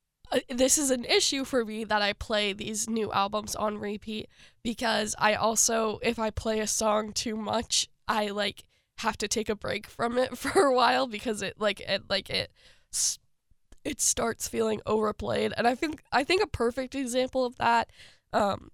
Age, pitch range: 10-29, 205-240 Hz